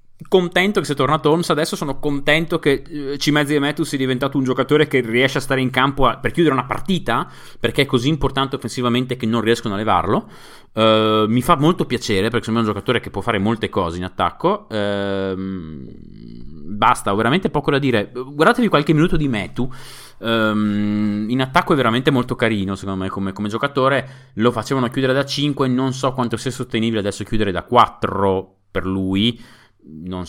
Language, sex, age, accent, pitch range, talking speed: Italian, male, 30-49, native, 95-135 Hz, 190 wpm